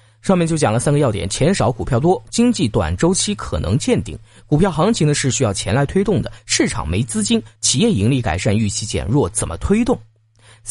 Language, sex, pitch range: Chinese, male, 105-170 Hz